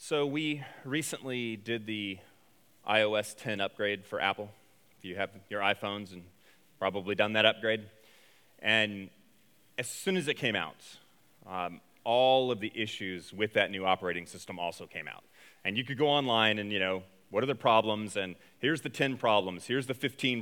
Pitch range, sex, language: 105-135 Hz, male, English